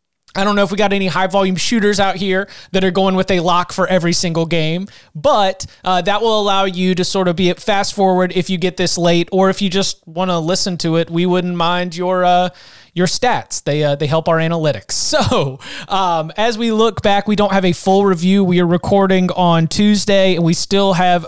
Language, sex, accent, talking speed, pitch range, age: English, male, American, 225 wpm, 160-190 Hz, 30-49